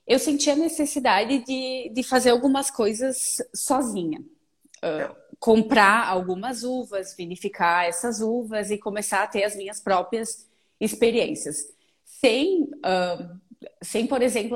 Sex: female